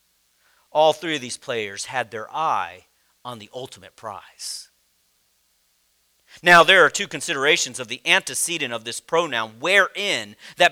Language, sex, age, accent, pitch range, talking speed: English, male, 40-59, American, 170-255 Hz, 140 wpm